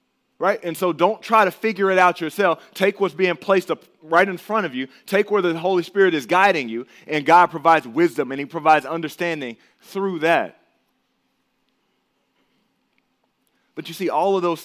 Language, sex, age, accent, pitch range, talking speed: English, male, 30-49, American, 135-185 Hz, 180 wpm